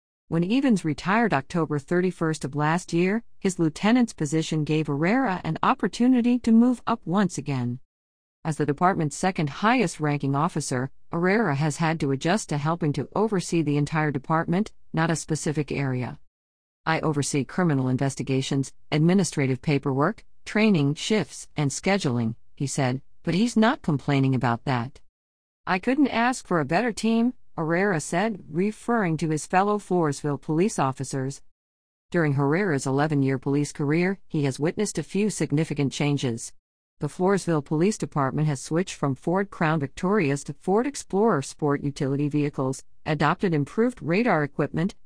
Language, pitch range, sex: English, 140-185 Hz, female